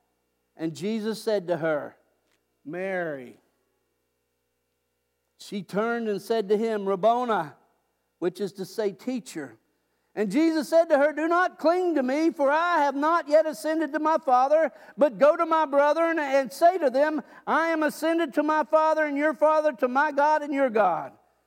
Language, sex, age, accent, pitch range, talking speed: English, male, 50-69, American, 215-305 Hz, 170 wpm